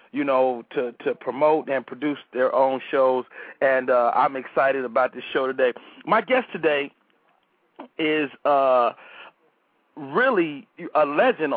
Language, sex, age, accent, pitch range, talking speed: English, male, 40-59, American, 130-165 Hz, 135 wpm